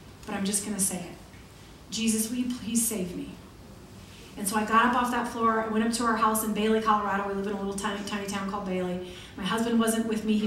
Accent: American